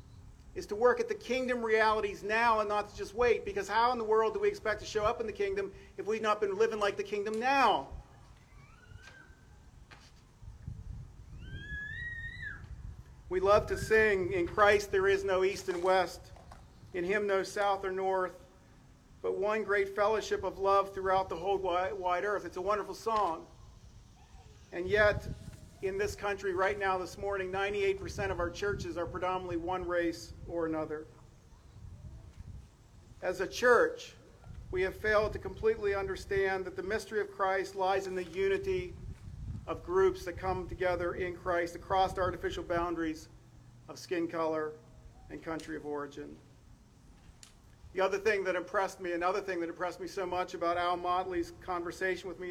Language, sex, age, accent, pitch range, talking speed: English, male, 40-59, American, 175-210 Hz, 165 wpm